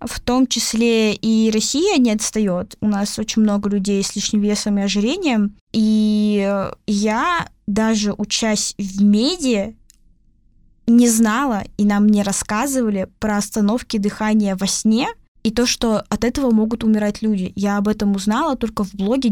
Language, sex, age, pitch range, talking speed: Russian, female, 10-29, 205-235 Hz, 150 wpm